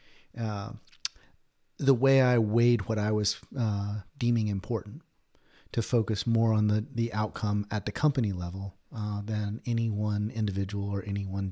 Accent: American